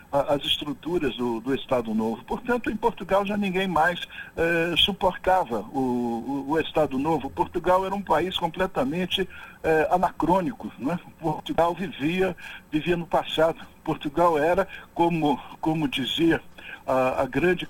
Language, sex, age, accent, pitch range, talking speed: Portuguese, male, 60-79, Brazilian, 140-185 Hz, 135 wpm